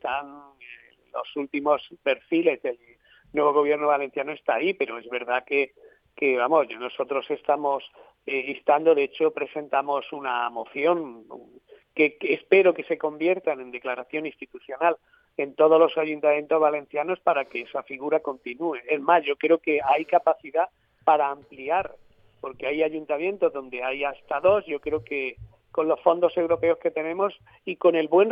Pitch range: 145-185 Hz